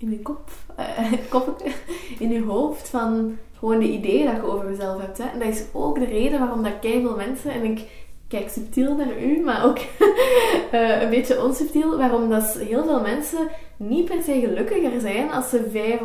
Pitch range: 215-255 Hz